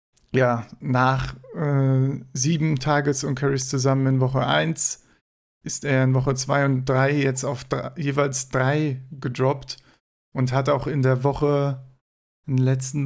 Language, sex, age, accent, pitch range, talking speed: German, male, 40-59, German, 130-145 Hz, 150 wpm